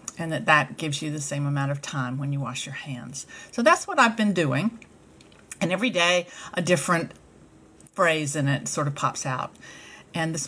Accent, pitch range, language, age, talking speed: American, 140-180 Hz, English, 50-69, 200 wpm